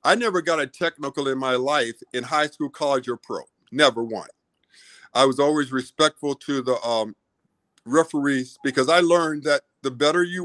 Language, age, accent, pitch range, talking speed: English, 50-69, American, 125-155 Hz, 180 wpm